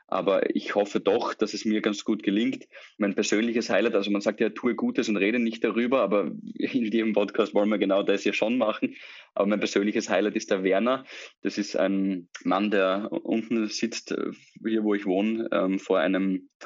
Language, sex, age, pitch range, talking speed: German, male, 20-39, 95-115 Hz, 200 wpm